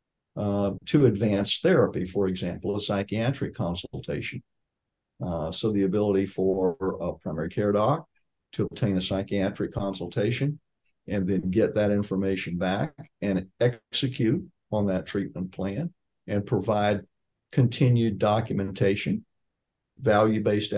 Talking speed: 115 wpm